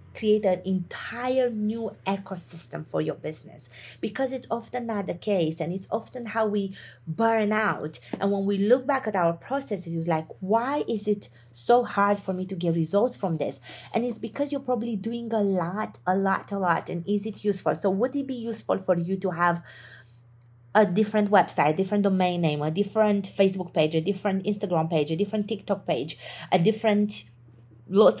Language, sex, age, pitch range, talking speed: English, female, 30-49, 165-220 Hz, 190 wpm